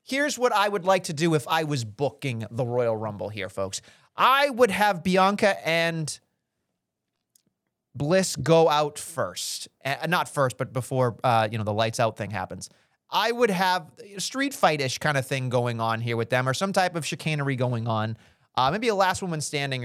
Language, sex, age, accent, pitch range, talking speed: English, male, 30-49, American, 125-190 Hz, 195 wpm